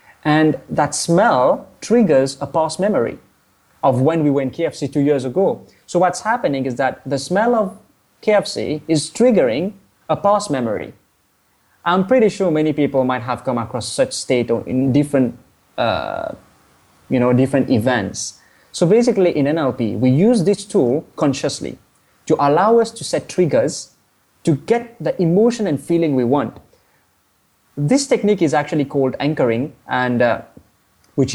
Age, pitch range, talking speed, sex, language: 20-39, 130-185 Hz, 155 wpm, male, English